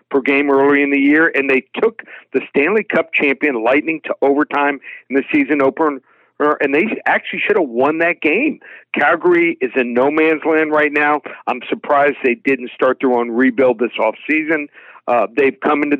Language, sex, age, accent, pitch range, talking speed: English, male, 50-69, American, 130-155 Hz, 190 wpm